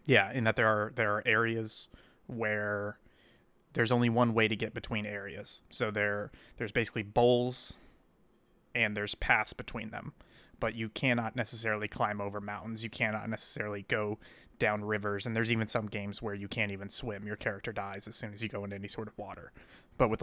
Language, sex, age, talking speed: English, male, 20-39, 195 wpm